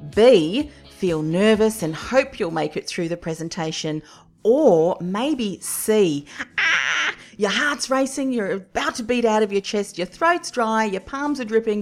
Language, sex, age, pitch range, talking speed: English, female, 40-59, 175-240 Hz, 170 wpm